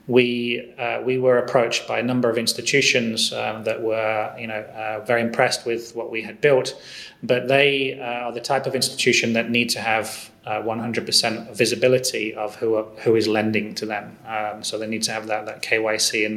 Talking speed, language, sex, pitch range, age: 200 wpm, Vietnamese, male, 110-120 Hz, 30-49